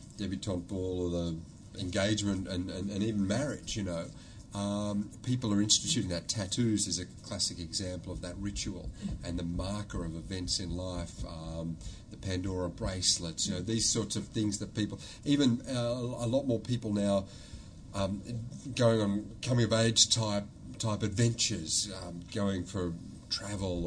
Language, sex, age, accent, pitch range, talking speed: English, male, 30-49, Australian, 90-110 Hz, 160 wpm